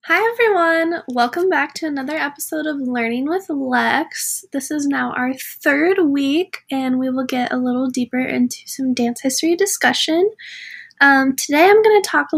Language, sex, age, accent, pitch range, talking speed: English, female, 10-29, American, 255-320 Hz, 175 wpm